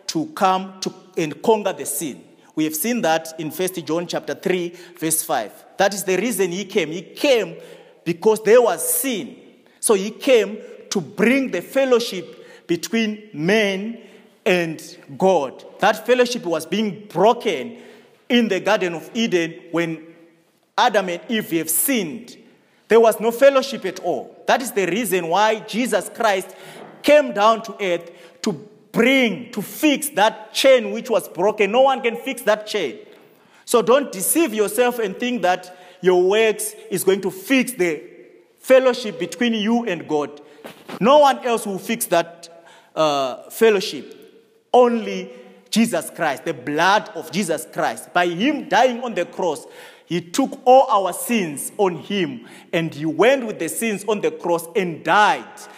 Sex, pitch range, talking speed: male, 175-245 Hz, 160 wpm